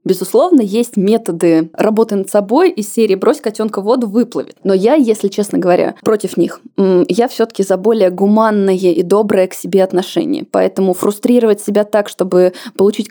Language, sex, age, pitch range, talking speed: Russian, female, 20-39, 195-230 Hz, 160 wpm